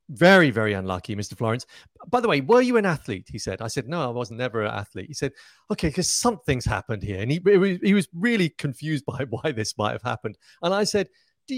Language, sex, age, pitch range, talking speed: English, male, 40-59, 115-155 Hz, 235 wpm